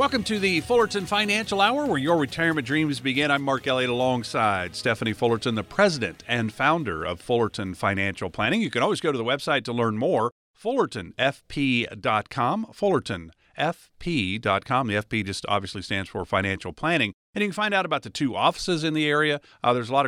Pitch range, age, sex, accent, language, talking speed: 105-145 Hz, 50-69, male, American, English, 180 wpm